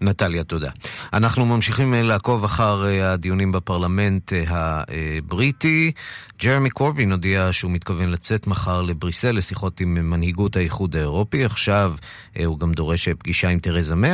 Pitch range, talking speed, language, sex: 85-110 Hz, 125 wpm, Hebrew, male